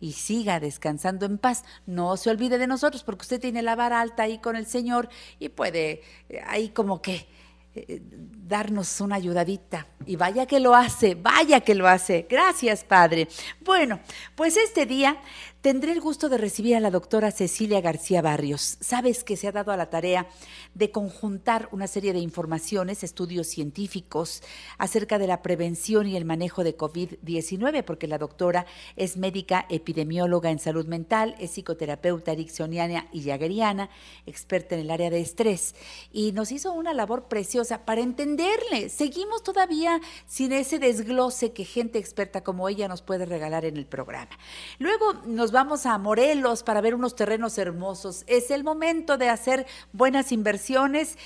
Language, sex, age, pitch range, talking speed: Spanish, female, 50-69, 175-240 Hz, 165 wpm